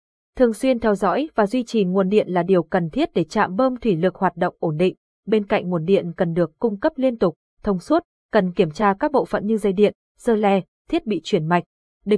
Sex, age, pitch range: female, 20-39, 180-230 Hz